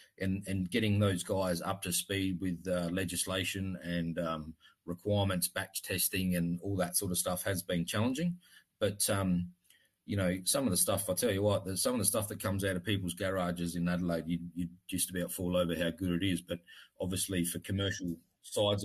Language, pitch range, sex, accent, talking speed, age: English, 90-100 Hz, male, Australian, 205 wpm, 30-49